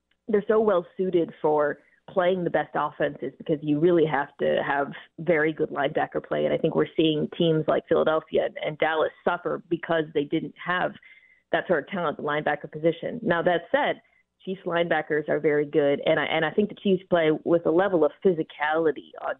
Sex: female